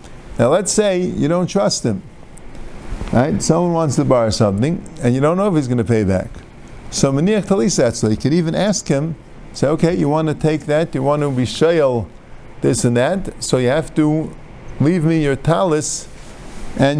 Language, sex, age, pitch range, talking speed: English, male, 50-69, 130-175 Hz, 190 wpm